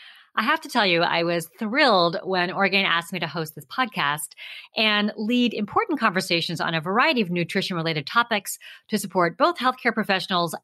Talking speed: 175 wpm